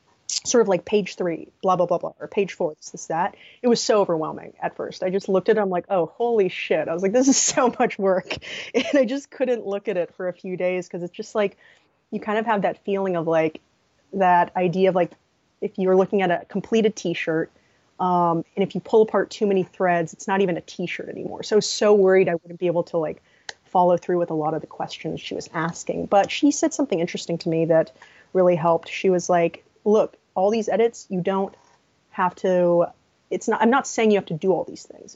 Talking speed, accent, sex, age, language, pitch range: 240 wpm, American, female, 30-49, English, 175-205 Hz